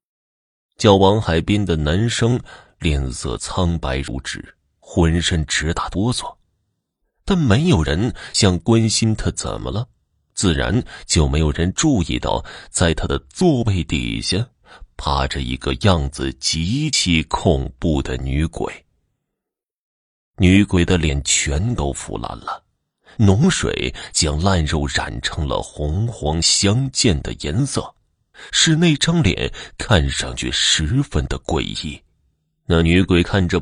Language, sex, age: Chinese, male, 30-49